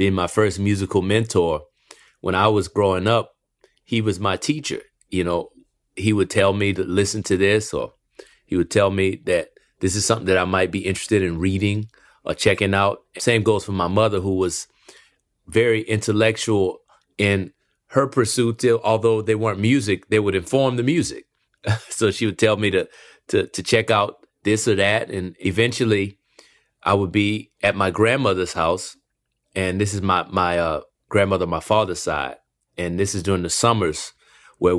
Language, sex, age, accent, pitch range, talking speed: English, male, 30-49, American, 95-115 Hz, 180 wpm